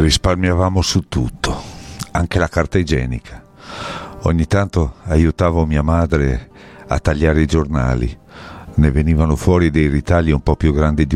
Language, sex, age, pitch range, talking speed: Italian, male, 50-69, 65-80 Hz, 140 wpm